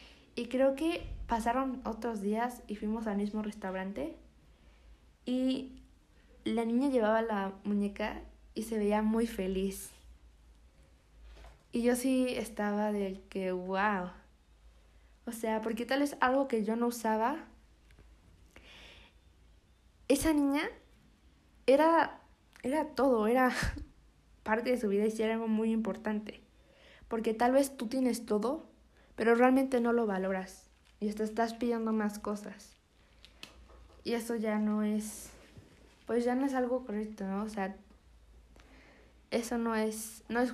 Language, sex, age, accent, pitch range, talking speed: Spanish, female, 20-39, Mexican, 195-240 Hz, 135 wpm